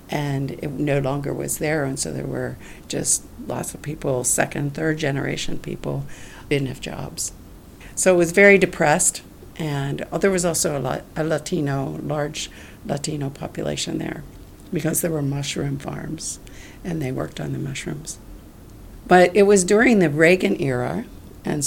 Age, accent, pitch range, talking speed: 60-79, American, 100-165 Hz, 155 wpm